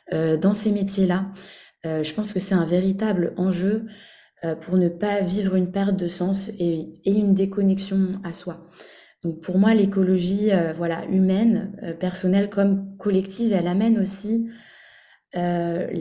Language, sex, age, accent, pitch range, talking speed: French, female, 20-39, French, 175-210 Hz, 155 wpm